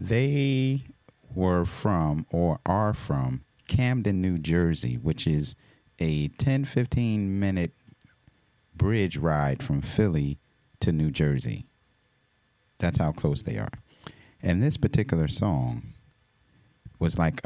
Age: 30-49